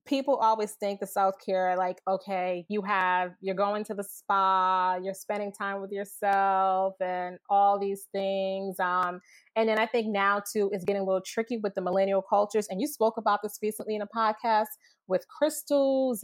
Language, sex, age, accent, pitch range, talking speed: English, female, 20-39, American, 190-220 Hz, 185 wpm